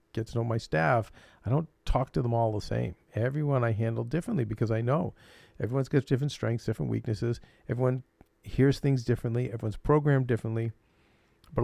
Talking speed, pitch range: 175 wpm, 105-125 Hz